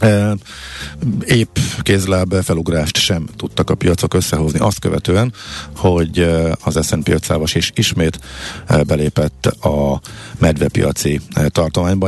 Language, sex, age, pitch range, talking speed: Hungarian, male, 50-69, 80-105 Hz, 100 wpm